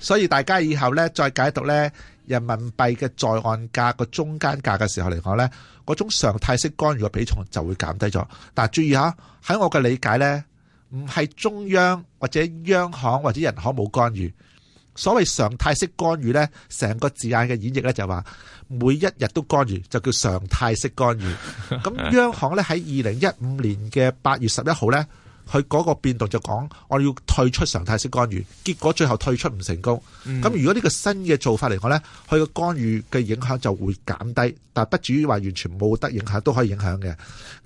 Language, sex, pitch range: Chinese, male, 110-150 Hz